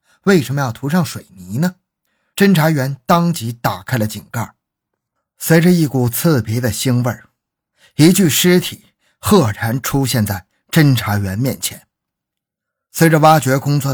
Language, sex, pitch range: Chinese, male, 110-165 Hz